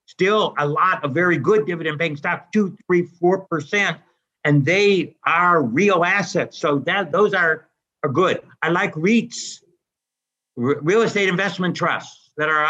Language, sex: German, male